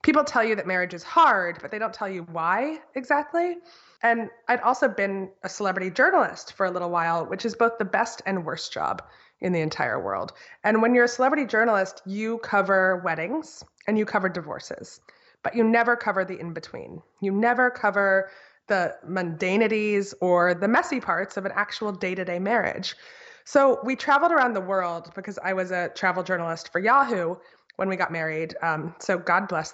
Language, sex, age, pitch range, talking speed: English, female, 20-39, 185-235 Hz, 185 wpm